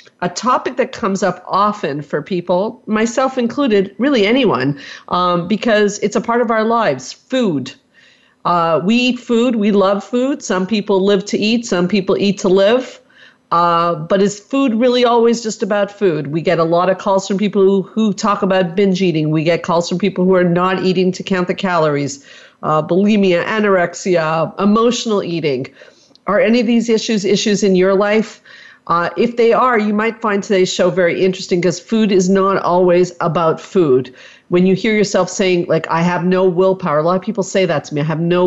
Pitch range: 165-210 Hz